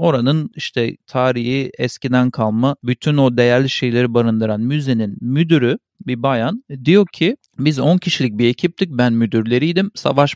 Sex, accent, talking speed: male, native, 140 wpm